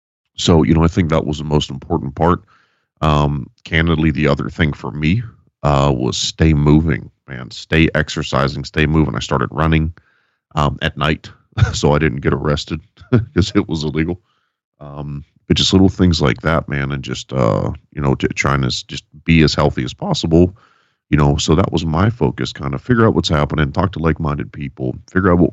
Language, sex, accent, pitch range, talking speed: English, male, American, 70-85 Hz, 195 wpm